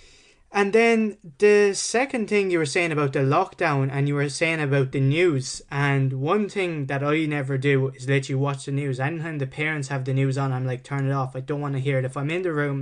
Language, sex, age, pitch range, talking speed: English, male, 20-39, 135-170 Hz, 255 wpm